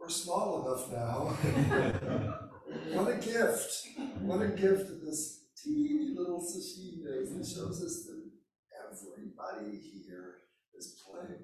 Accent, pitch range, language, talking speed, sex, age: American, 115-175 Hz, English, 120 wpm, male, 60-79